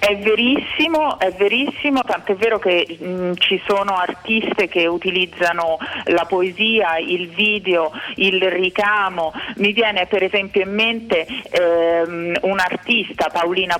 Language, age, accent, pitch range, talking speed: Italian, 40-59, native, 170-215 Hz, 120 wpm